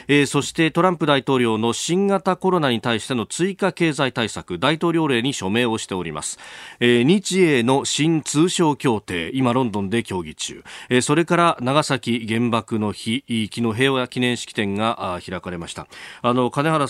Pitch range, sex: 100-140 Hz, male